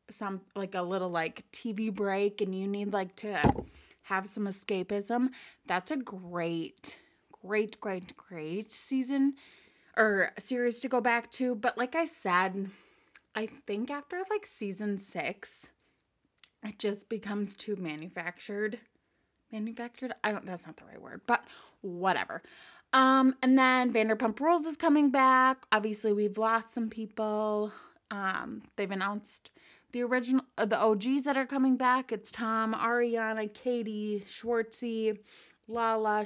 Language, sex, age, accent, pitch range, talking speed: English, female, 20-39, American, 195-250 Hz, 140 wpm